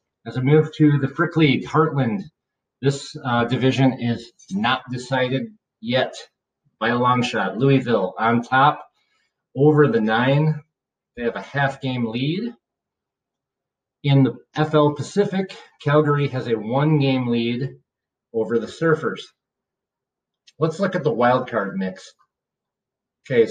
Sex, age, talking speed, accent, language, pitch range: male, 40-59, 125 wpm, American, English, 115-145 Hz